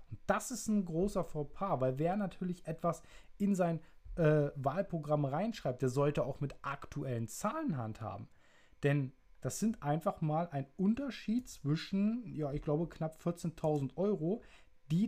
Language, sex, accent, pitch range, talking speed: German, male, German, 135-180 Hz, 145 wpm